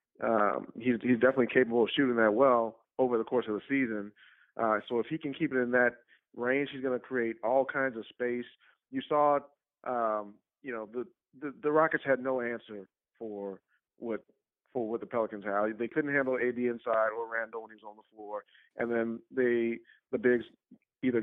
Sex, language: male, English